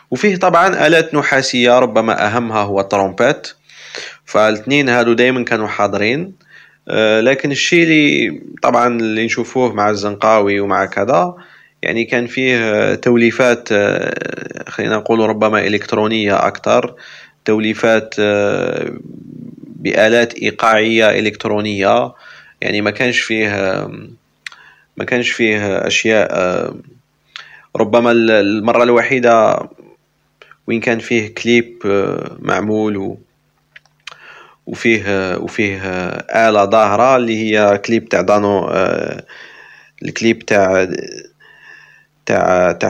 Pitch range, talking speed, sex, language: 100-120 Hz, 90 wpm, male, Arabic